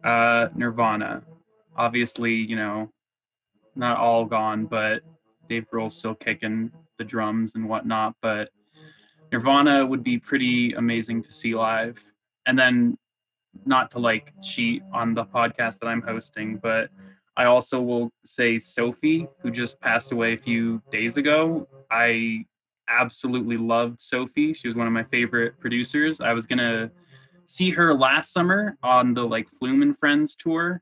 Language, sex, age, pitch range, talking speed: English, male, 20-39, 115-145 Hz, 150 wpm